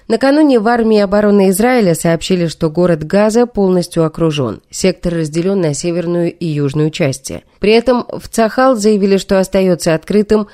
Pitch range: 160-220 Hz